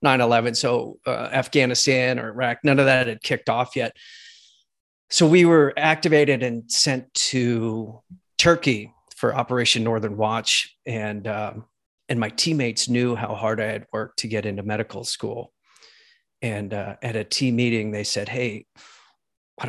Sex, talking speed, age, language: male, 155 wpm, 40-59, English